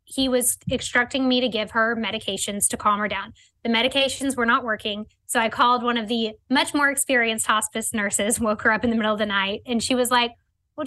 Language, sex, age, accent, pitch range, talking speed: English, female, 10-29, American, 220-260 Hz, 230 wpm